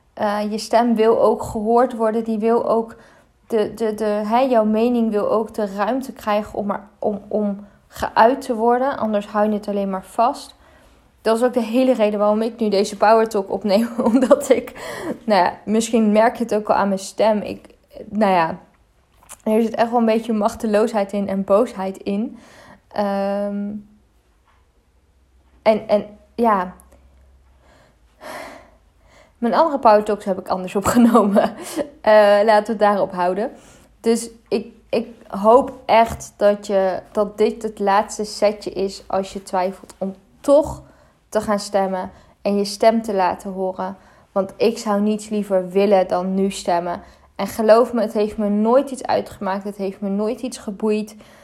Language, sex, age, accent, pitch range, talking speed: Dutch, female, 20-39, Dutch, 200-230 Hz, 170 wpm